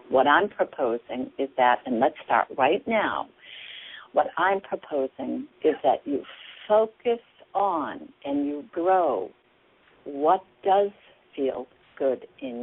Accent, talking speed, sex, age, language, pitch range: American, 125 wpm, female, 60-79, English, 140-195 Hz